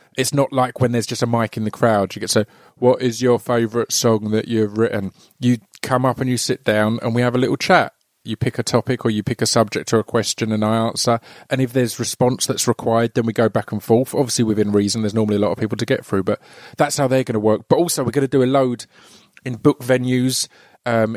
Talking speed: 265 wpm